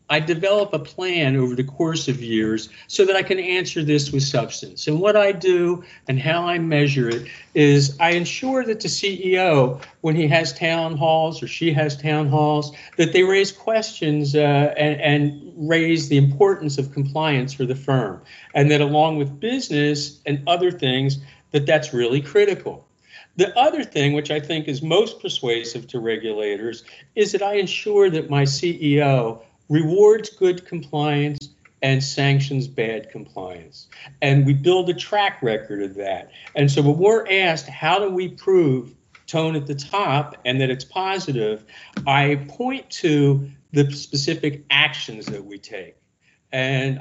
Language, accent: English, American